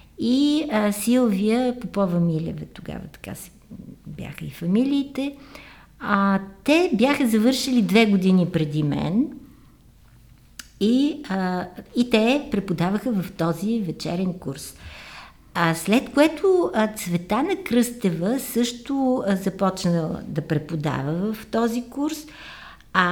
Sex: female